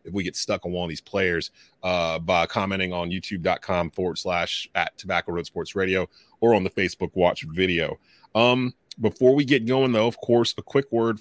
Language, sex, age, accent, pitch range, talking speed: English, male, 30-49, American, 100-120 Hz, 205 wpm